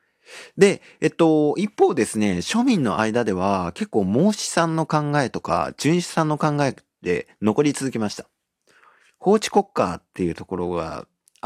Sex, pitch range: male, 105-170 Hz